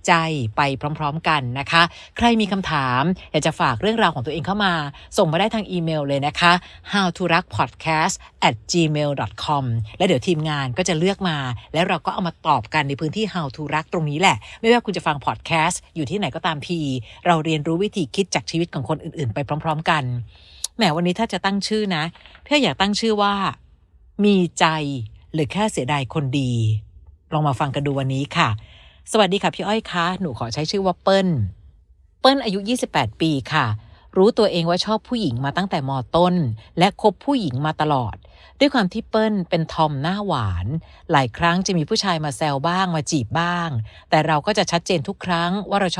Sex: female